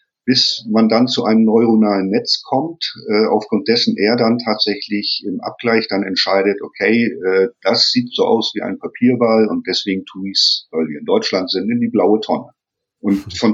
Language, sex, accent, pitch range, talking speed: German, male, German, 100-135 Hz, 190 wpm